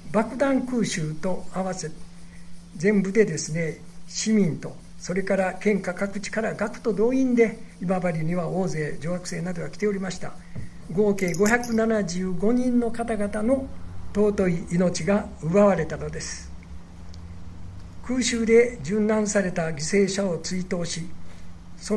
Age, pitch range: 60-79, 165-210 Hz